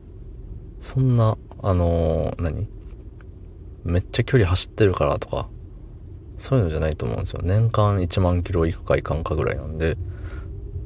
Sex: male